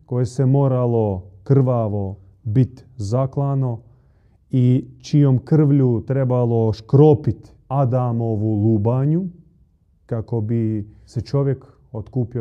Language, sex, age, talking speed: Croatian, male, 30-49, 85 wpm